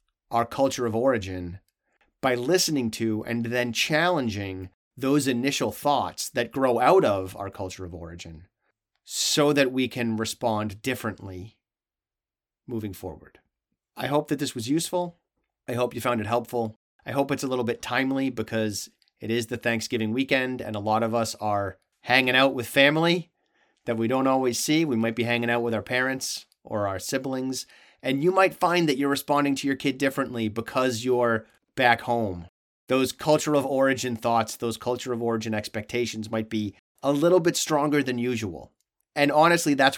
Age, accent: 30-49, American